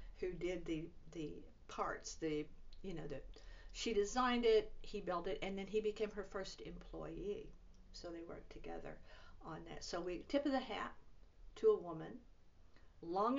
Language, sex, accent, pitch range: English, female, American, 160-215 Hz